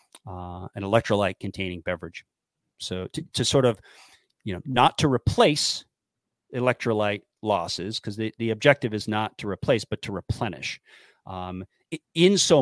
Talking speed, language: 150 wpm, English